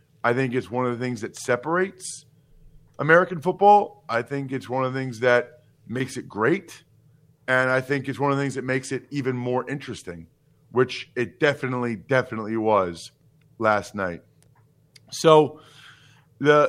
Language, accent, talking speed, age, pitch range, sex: English, American, 160 wpm, 40-59, 125-155 Hz, male